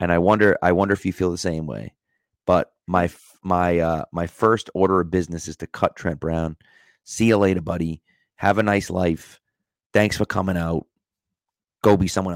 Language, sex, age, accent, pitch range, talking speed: English, male, 30-49, American, 95-140 Hz, 195 wpm